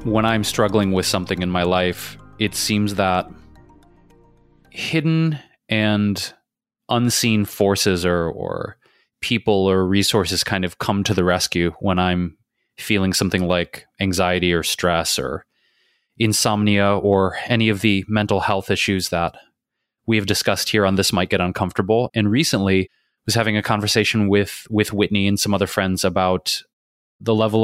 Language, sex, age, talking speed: English, male, 20-39, 150 wpm